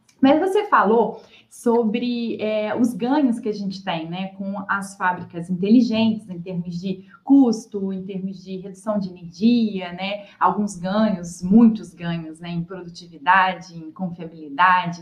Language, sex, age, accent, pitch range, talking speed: Portuguese, female, 20-39, Brazilian, 190-245 Hz, 145 wpm